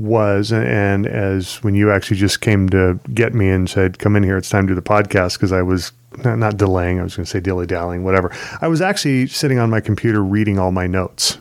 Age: 30-49